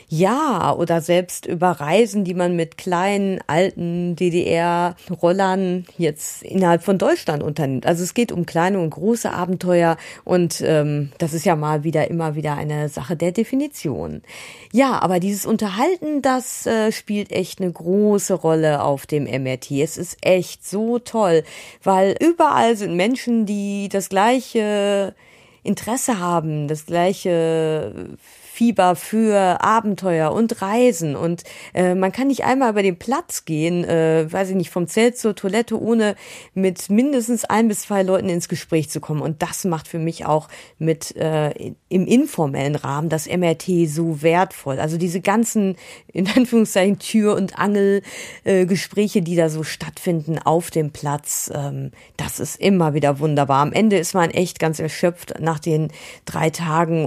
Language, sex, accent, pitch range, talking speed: German, female, German, 160-205 Hz, 160 wpm